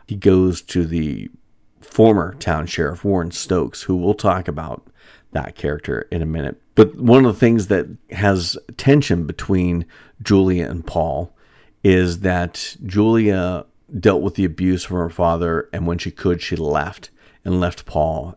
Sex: male